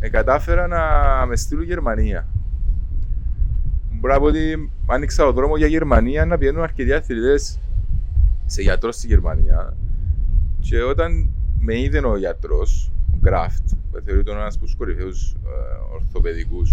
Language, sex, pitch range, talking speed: Greek, male, 75-95 Hz, 125 wpm